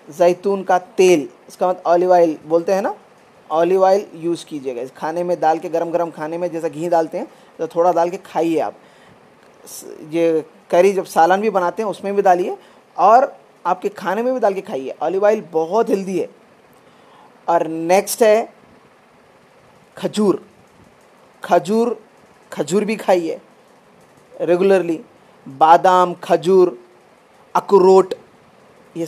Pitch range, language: 170-195 Hz, Hindi